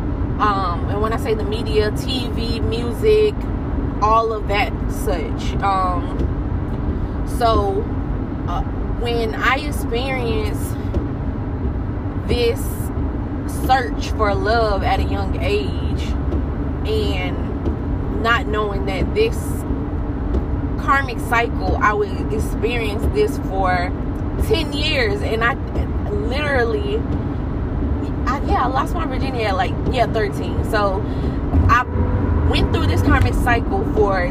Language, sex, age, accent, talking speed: English, female, 20-39, American, 105 wpm